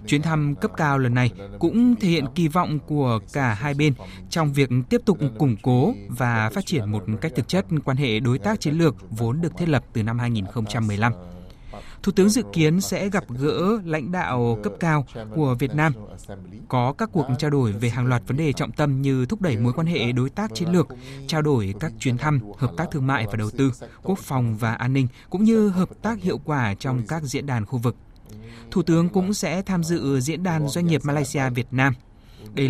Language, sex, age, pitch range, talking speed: Vietnamese, male, 20-39, 120-155 Hz, 220 wpm